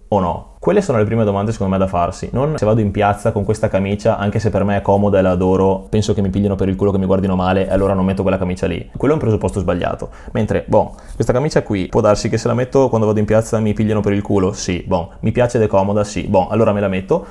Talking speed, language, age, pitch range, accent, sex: 290 wpm, Italian, 20-39, 95-110 Hz, native, male